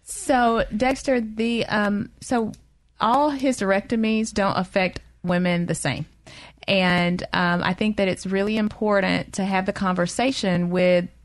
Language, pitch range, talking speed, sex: English, 180-215 Hz, 135 wpm, female